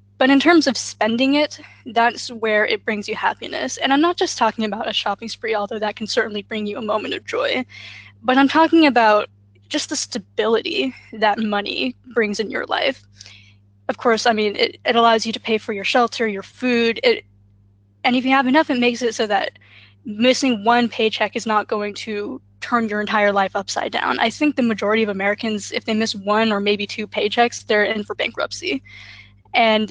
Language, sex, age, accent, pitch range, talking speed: English, female, 10-29, American, 205-245 Hz, 205 wpm